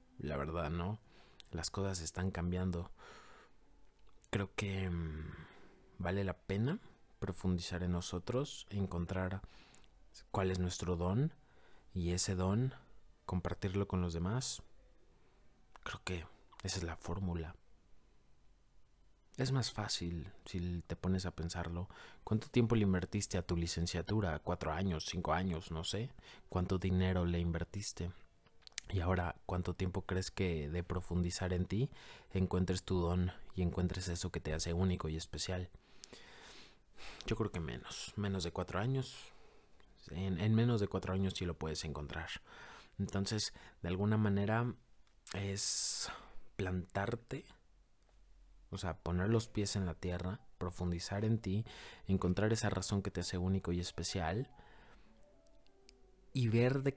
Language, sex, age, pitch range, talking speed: Spanish, male, 30-49, 85-100 Hz, 135 wpm